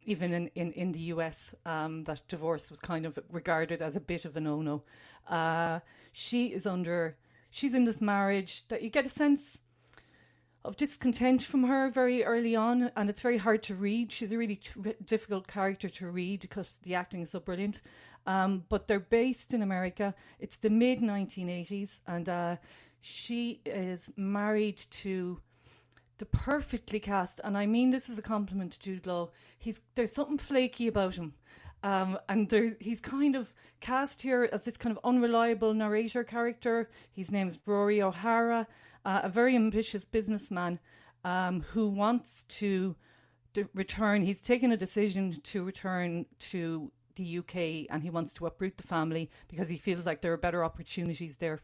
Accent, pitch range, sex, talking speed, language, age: Irish, 175-230 Hz, female, 165 wpm, English, 40-59